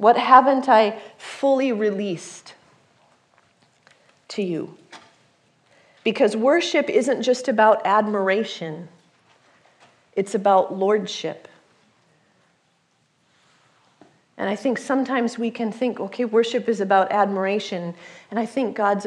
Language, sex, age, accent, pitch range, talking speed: English, female, 40-59, American, 185-230 Hz, 100 wpm